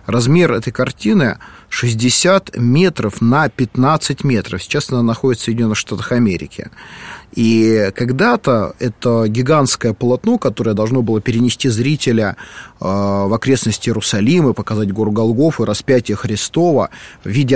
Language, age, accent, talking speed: Russian, 30-49, native, 125 wpm